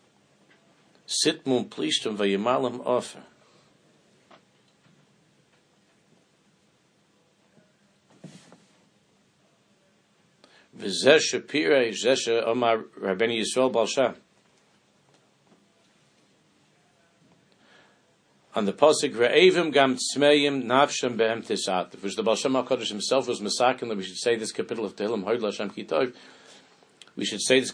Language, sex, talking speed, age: English, male, 90 wpm, 60-79